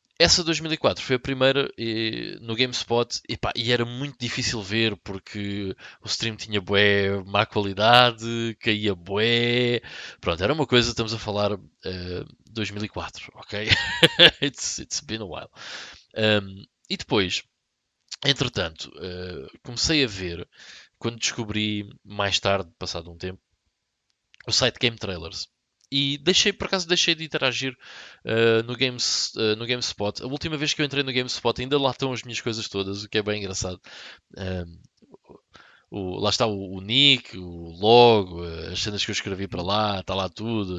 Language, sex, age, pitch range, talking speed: Portuguese, male, 20-39, 95-120 Hz, 150 wpm